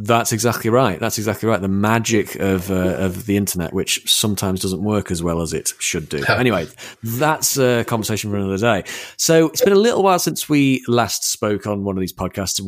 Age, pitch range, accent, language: 30-49, 95-120 Hz, British, English